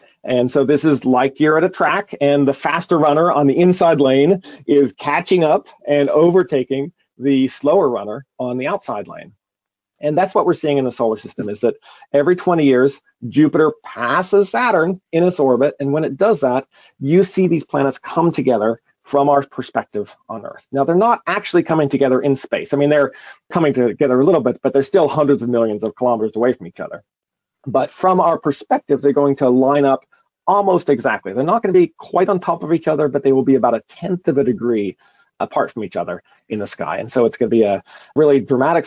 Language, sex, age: English, male, 40-59